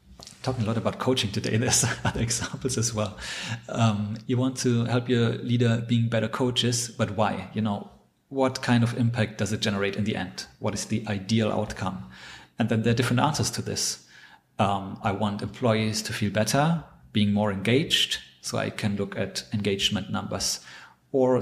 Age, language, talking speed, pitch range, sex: 40-59, English, 185 wpm, 105-120 Hz, male